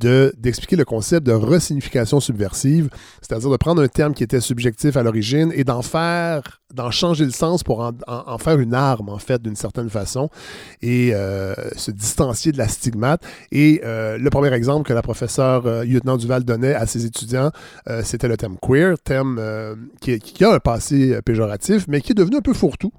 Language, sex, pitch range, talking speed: French, male, 120-160 Hz, 210 wpm